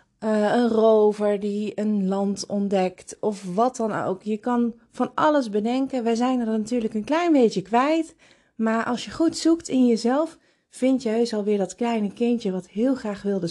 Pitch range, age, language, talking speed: 175-230 Hz, 30-49, Dutch, 185 wpm